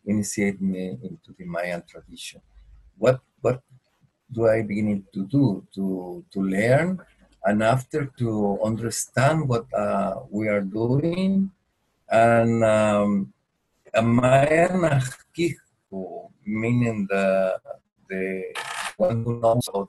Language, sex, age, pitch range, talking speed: English, male, 50-69, 100-125 Hz, 110 wpm